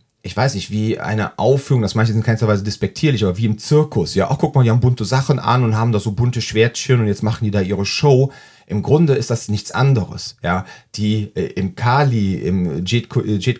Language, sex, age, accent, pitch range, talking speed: German, male, 40-59, German, 105-135 Hz, 225 wpm